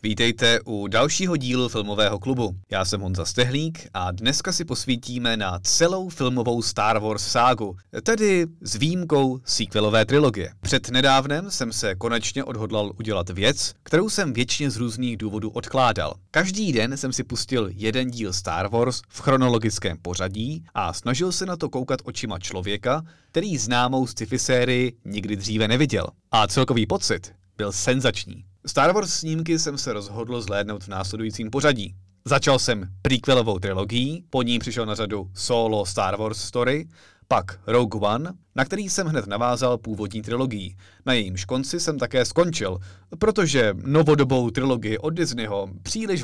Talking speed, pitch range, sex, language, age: 150 wpm, 105-135 Hz, male, Czech, 30-49